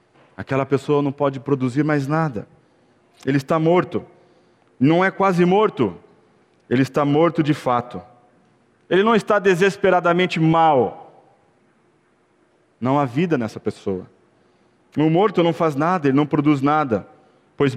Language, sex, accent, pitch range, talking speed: Portuguese, male, Brazilian, 145-185 Hz, 130 wpm